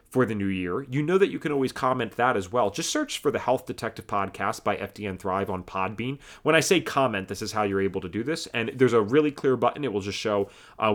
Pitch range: 110-150 Hz